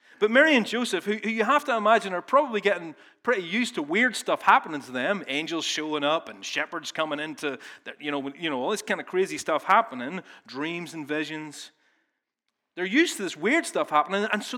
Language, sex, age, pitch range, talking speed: English, male, 30-49, 150-215 Hz, 205 wpm